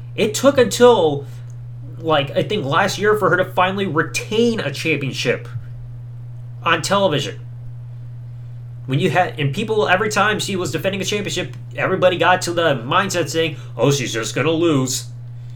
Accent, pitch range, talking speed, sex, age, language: American, 120-175 Hz, 155 wpm, male, 30-49, English